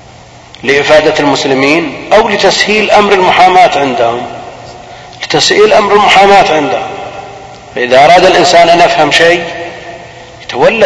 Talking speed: 100 wpm